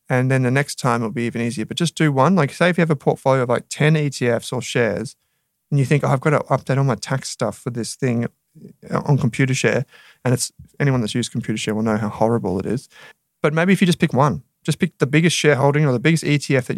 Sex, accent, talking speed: male, Australian, 260 wpm